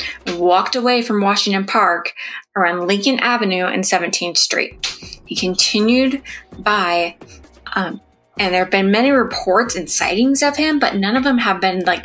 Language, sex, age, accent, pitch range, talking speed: English, female, 20-39, American, 185-225 Hz, 160 wpm